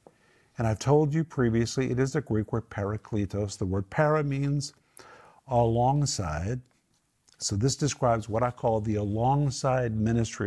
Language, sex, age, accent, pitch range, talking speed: English, male, 50-69, American, 110-135 Hz, 145 wpm